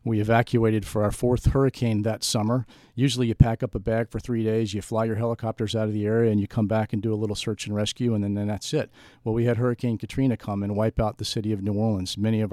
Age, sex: 40-59, male